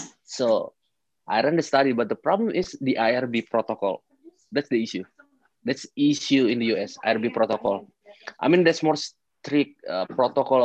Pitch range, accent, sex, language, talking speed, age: 125-155 Hz, Indonesian, male, English, 165 wpm, 30-49